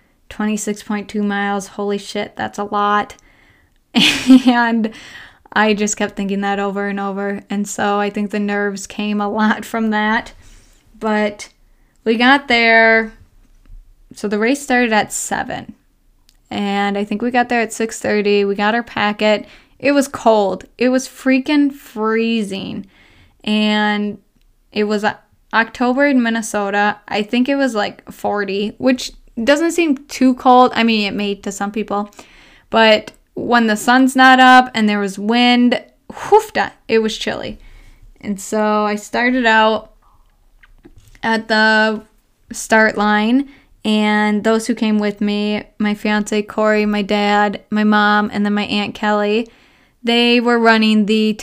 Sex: female